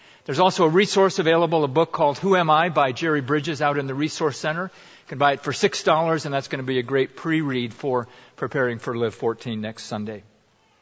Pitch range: 115-145 Hz